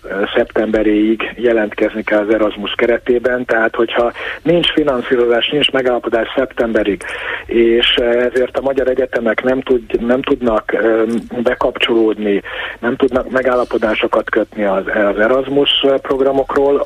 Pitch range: 110-135 Hz